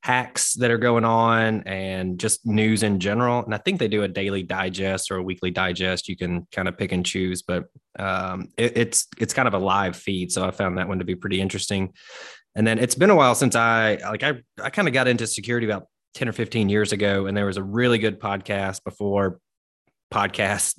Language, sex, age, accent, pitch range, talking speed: English, male, 20-39, American, 95-110 Hz, 220 wpm